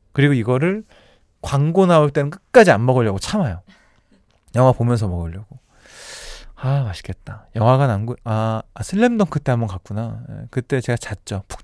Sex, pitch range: male, 120-195 Hz